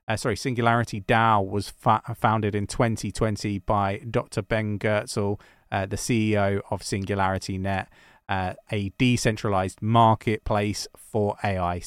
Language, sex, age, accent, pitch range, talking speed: English, male, 30-49, British, 105-120 Hz, 125 wpm